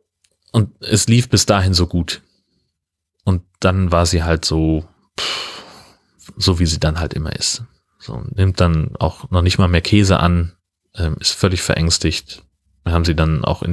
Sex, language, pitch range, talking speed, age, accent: male, German, 80-95 Hz, 175 wpm, 30-49, German